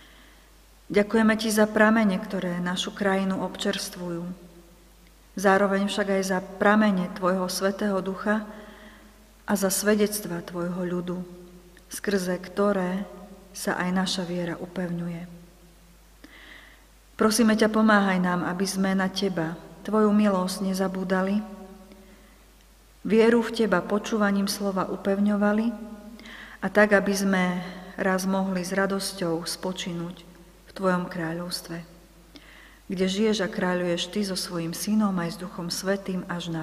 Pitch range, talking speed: 180-205 Hz, 115 wpm